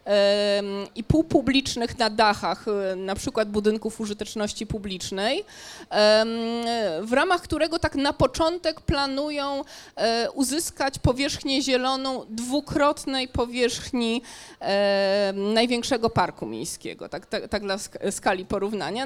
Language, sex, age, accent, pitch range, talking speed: Polish, female, 20-39, native, 210-275 Hz, 95 wpm